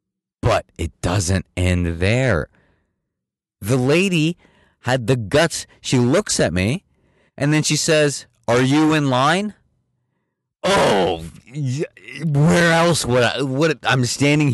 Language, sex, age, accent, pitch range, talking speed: English, male, 30-49, American, 105-155 Hz, 125 wpm